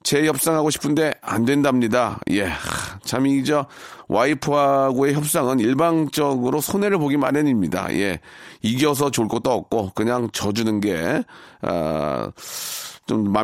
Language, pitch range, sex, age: Korean, 110-145 Hz, male, 40-59